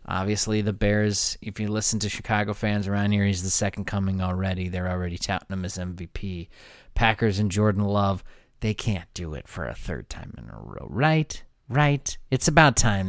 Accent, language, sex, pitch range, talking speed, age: American, English, male, 95-120 Hz, 195 wpm, 30-49